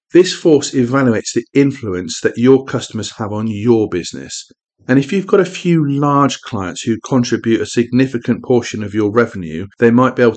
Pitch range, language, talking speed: 100-125 Hz, English, 185 wpm